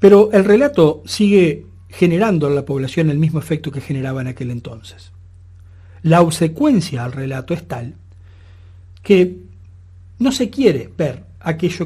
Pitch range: 115-180 Hz